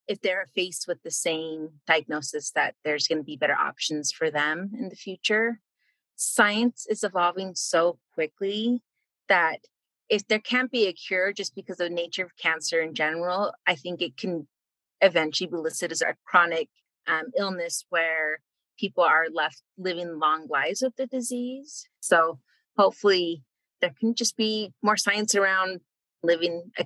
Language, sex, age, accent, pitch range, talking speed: English, female, 30-49, American, 160-210 Hz, 160 wpm